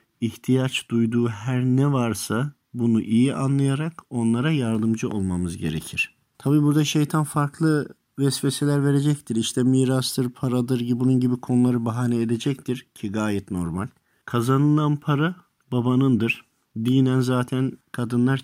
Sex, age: male, 50-69